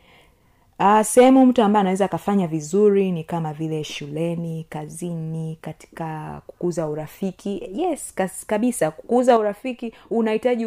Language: Swahili